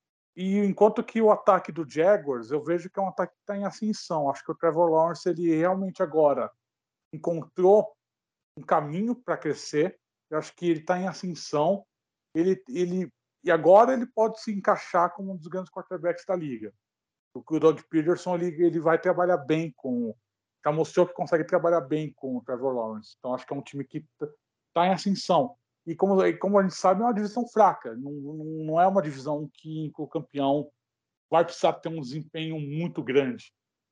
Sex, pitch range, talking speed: male, 150-185 Hz, 195 wpm